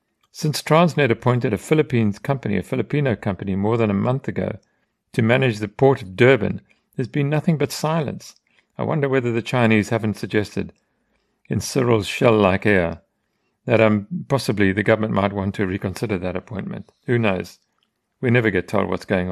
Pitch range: 100-120 Hz